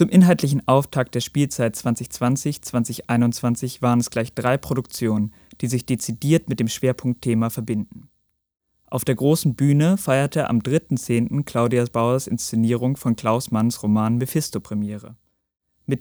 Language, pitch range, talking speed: German, 115-145 Hz, 125 wpm